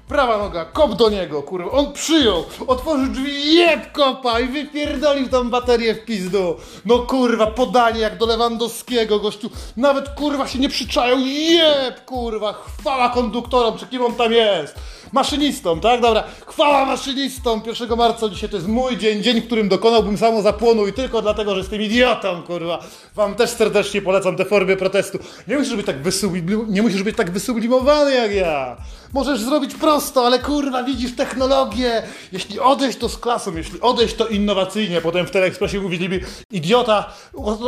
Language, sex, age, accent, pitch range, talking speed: Polish, male, 20-39, native, 210-270 Hz, 165 wpm